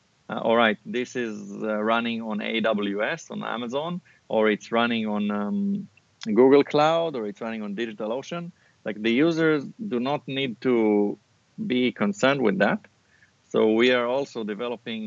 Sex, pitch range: male, 110-140 Hz